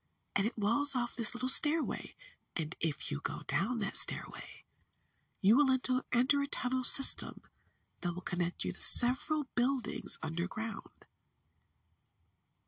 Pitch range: 155-255 Hz